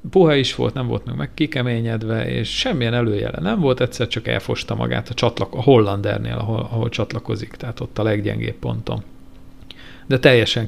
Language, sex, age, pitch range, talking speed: Hungarian, male, 50-69, 110-130 Hz, 170 wpm